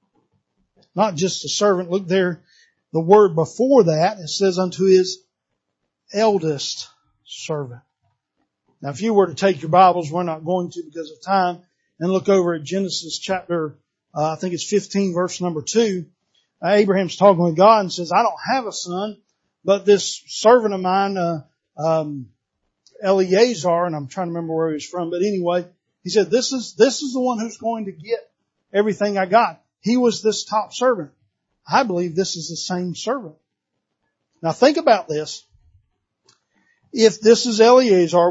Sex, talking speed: male, 170 wpm